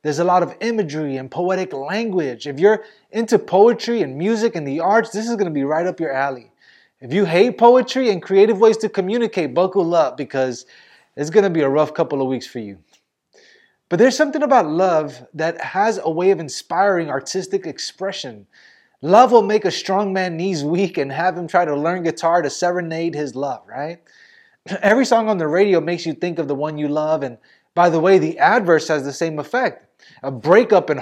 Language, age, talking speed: English, 20-39, 205 wpm